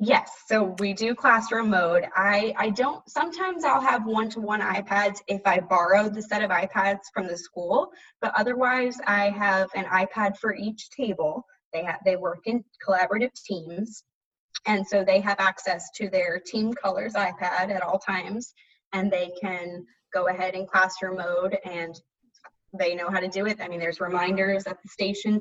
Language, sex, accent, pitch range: English, female, American, 185-220 Hz